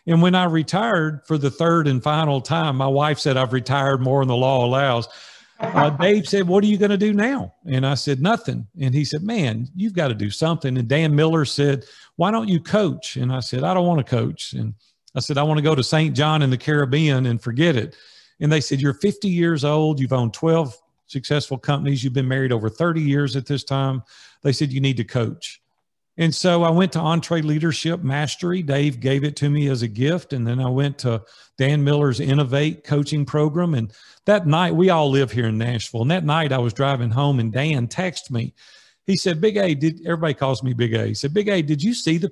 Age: 50-69